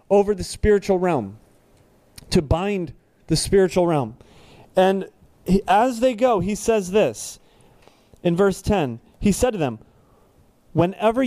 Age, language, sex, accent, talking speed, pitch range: 30-49, English, male, American, 130 wpm, 140-200 Hz